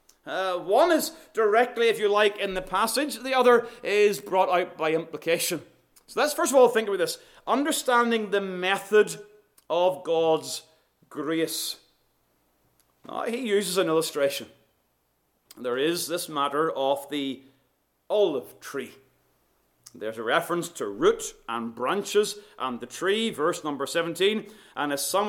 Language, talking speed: English, 140 wpm